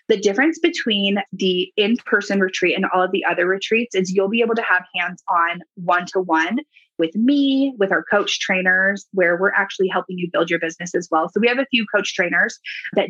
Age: 20-39